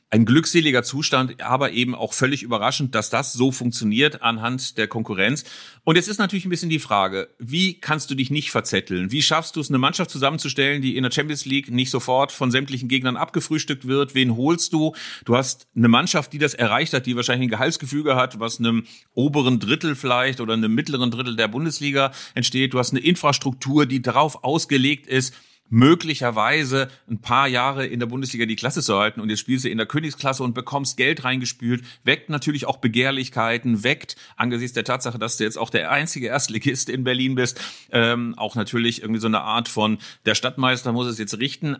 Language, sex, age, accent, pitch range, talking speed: German, male, 40-59, German, 115-140 Hz, 200 wpm